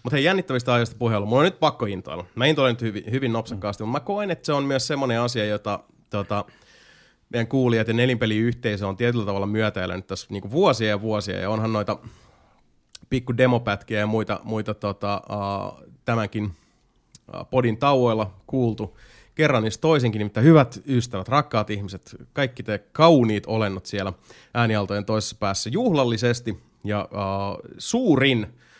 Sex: male